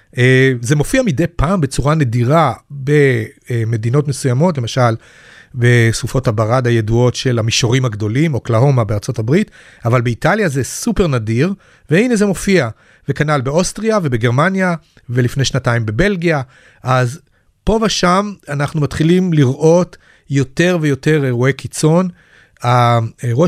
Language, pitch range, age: Hebrew, 120-155 Hz, 40-59